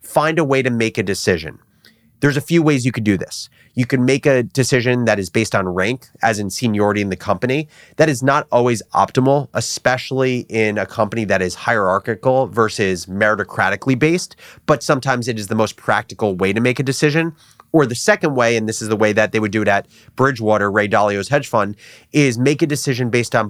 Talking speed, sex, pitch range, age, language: 215 wpm, male, 110-145 Hz, 30-49, English